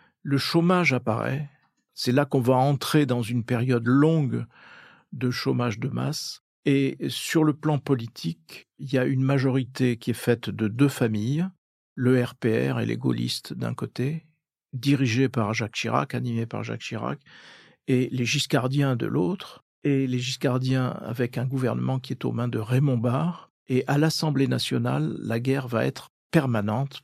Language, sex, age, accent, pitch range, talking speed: French, male, 50-69, French, 120-140 Hz, 165 wpm